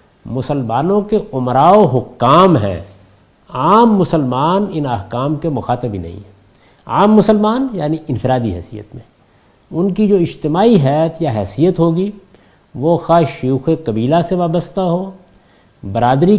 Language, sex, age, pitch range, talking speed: Urdu, male, 50-69, 120-190 Hz, 130 wpm